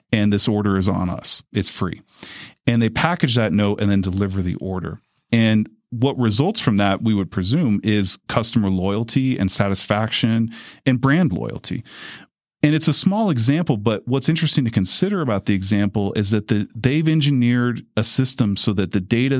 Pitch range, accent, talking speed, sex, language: 100-125 Hz, American, 175 wpm, male, English